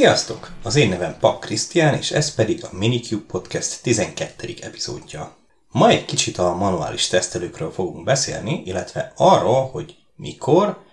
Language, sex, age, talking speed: Hungarian, male, 30-49, 145 wpm